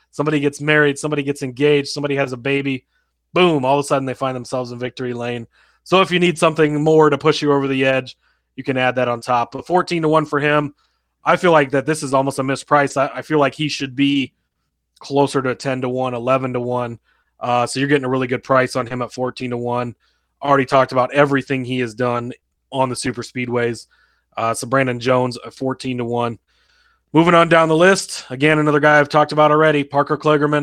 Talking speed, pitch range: 230 wpm, 125-145 Hz